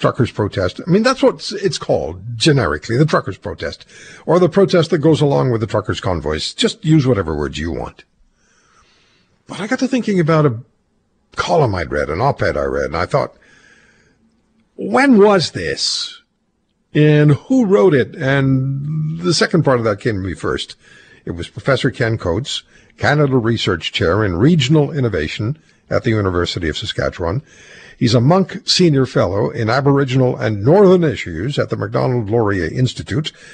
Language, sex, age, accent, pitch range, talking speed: English, male, 60-79, American, 115-180 Hz, 165 wpm